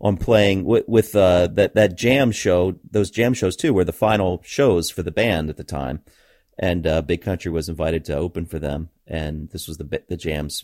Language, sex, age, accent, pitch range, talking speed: English, male, 30-49, American, 80-95 Hz, 220 wpm